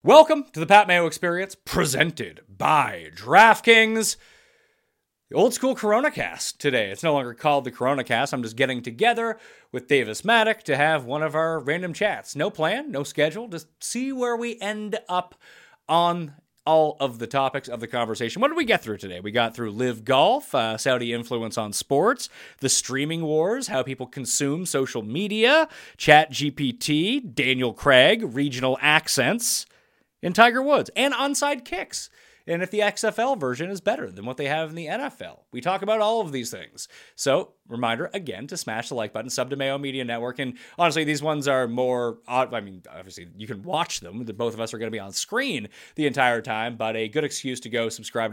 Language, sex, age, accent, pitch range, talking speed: English, male, 30-49, American, 120-185 Hz, 190 wpm